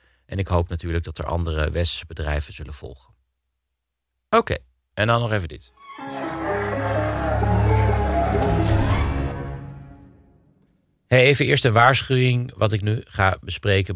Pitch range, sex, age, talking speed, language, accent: 80-100 Hz, male, 40-59, 120 wpm, Dutch, Dutch